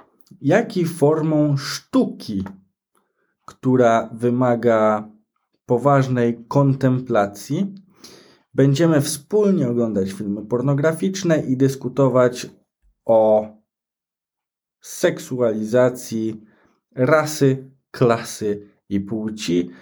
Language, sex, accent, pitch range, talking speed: Polish, male, native, 100-135 Hz, 60 wpm